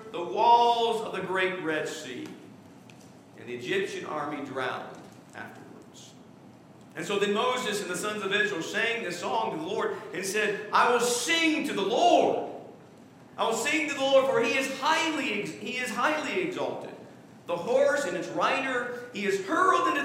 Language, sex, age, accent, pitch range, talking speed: English, male, 50-69, American, 225-290 Hz, 175 wpm